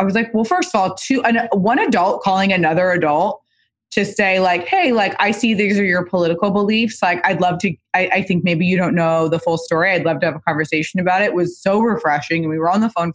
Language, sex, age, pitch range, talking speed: English, female, 20-39, 175-220 Hz, 265 wpm